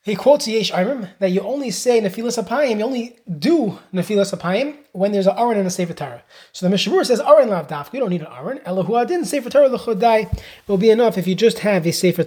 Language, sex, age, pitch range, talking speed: English, male, 20-39, 175-225 Hz, 235 wpm